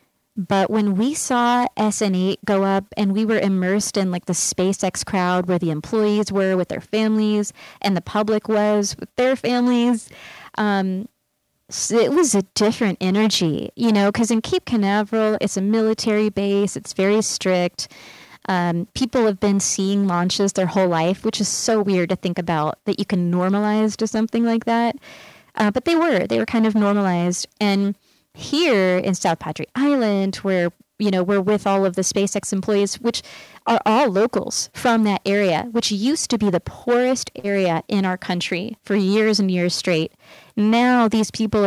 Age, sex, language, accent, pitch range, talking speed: 20-39, female, English, American, 190-225 Hz, 175 wpm